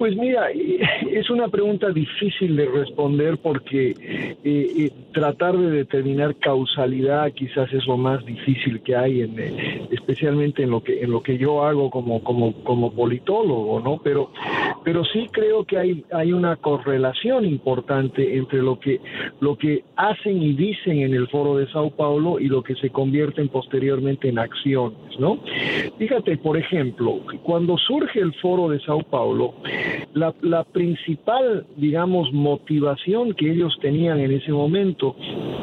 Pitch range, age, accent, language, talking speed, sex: 135-180 Hz, 50-69, Mexican, Spanish, 150 wpm, male